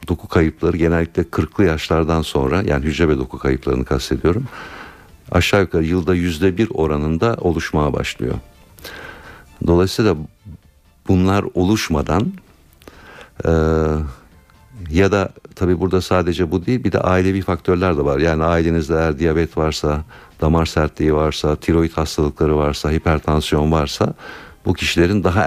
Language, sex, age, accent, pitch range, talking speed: Turkish, male, 60-79, native, 80-90 Hz, 125 wpm